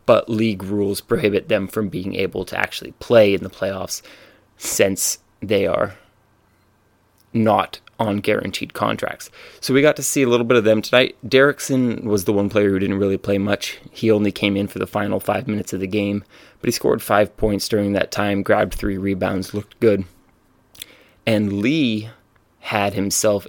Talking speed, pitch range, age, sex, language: 180 wpm, 100-110 Hz, 20-39, male, English